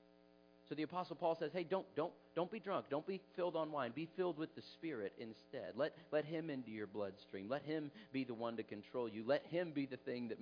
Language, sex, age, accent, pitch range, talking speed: English, male, 40-59, American, 110-160 Hz, 240 wpm